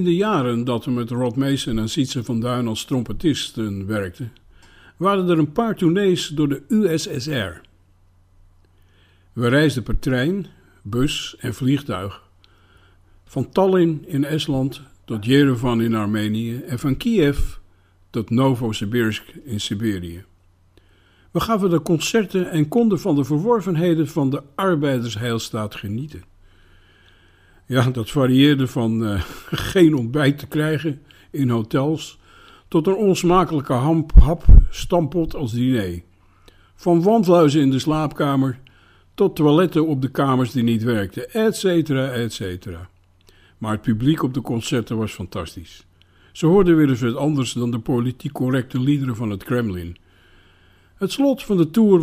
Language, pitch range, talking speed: Dutch, 100-150 Hz, 140 wpm